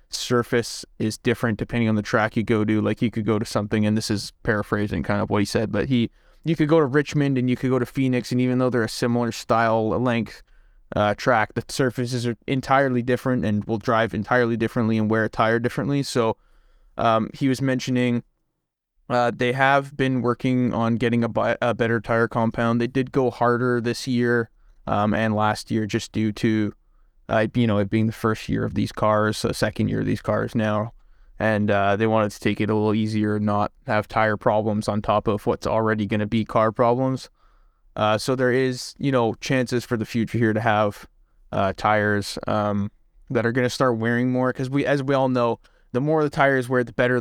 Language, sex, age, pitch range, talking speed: English, male, 20-39, 110-125 Hz, 215 wpm